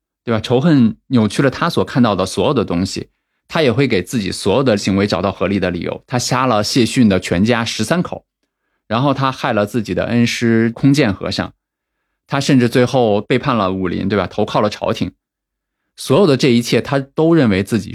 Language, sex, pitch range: Chinese, male, 100-130 Hz